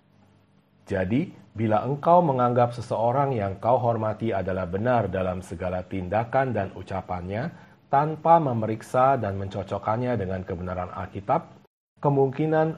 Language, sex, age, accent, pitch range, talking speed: Indonesian, male, 40-59, native, 100-135 Hz, 110 wpm